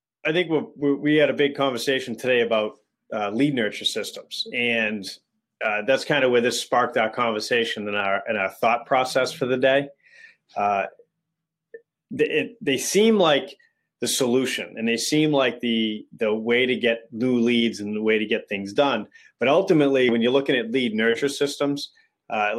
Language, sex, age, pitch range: English, male, 30-49, 115-150 Hz